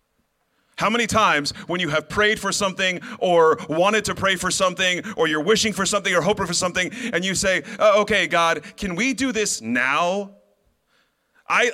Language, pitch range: English, 165-205 Hz